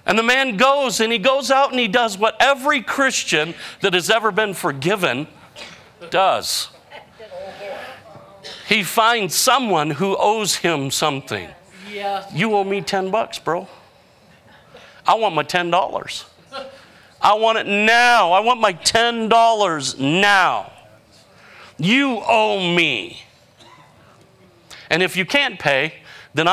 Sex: male